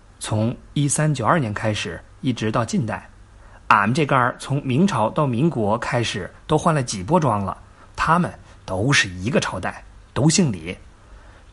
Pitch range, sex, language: 100-135 Hz, male, Chinese